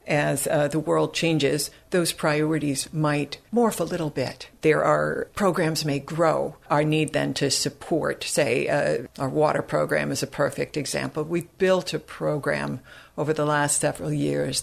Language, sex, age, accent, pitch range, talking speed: English, female, 60-79, American, 145-170 Hz, 165 wpm